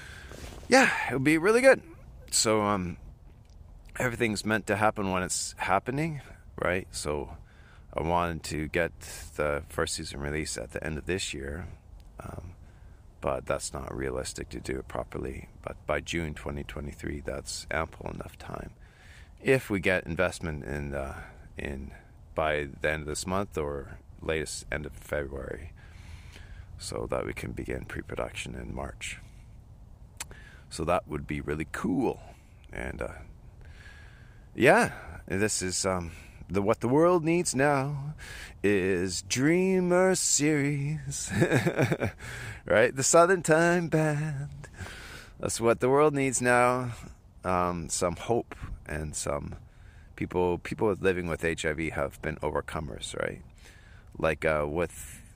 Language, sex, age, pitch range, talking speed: English, male, 40-59, 80-115 Hz, 135 wpm